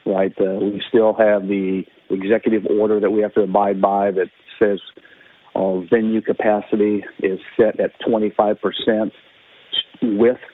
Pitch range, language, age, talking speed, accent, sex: 100-115 Hz, English, 40-59, 135 wpm, American, male